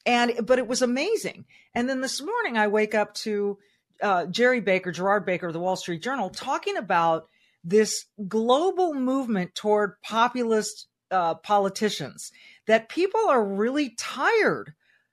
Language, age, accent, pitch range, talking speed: English, 40-59, American, 185-245 Hz, 145 wpm